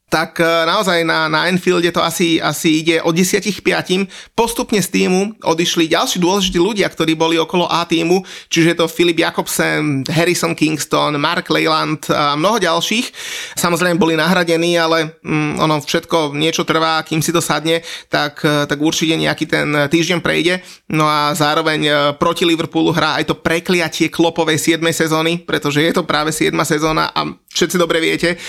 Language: Slovak